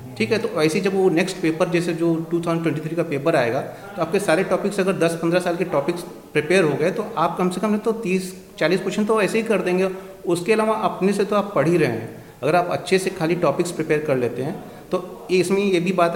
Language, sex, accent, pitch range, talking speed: Hindi, male, native, 155-185 Hz, 240 wpm